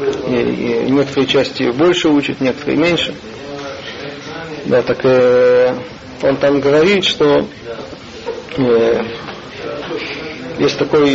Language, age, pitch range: Russian, 40-59, 130-170 Hz